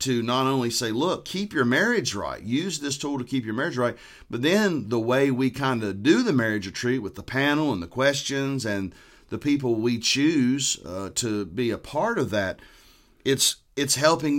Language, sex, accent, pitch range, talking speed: English, male, American, 110-140 Hz, 205 wpm